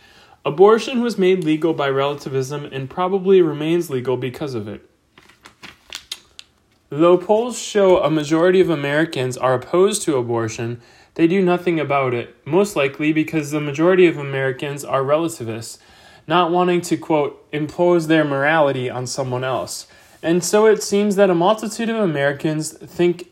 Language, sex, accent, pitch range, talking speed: English, male, American, 135-175 Hz, 150 wpm